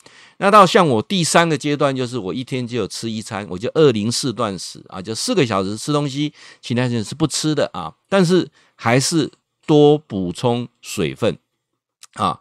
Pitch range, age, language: 110-155 Hz, 50-69, Chinese